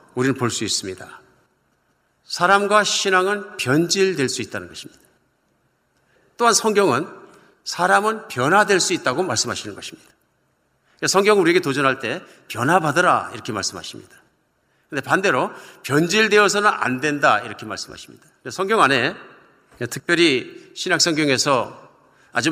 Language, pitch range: Korean, 145-200 Hz